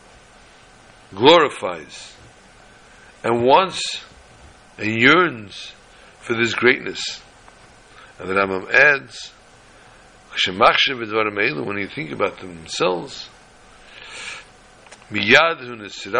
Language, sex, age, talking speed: English, male, 60-79, 65 wpm